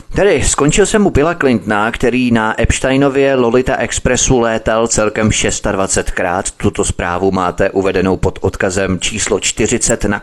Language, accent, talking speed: Czech, native, 135 wpm